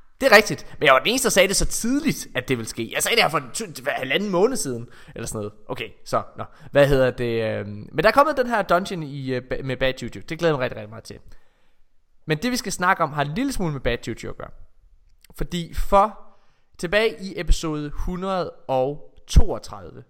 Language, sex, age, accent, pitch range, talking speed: Danish, male, 20-39, native, 125-185 Hz, 225 wpm